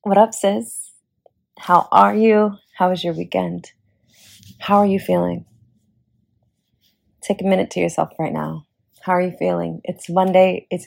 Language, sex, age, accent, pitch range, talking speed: English, female, 20-39, American, 155-185 Hz, 155 wpm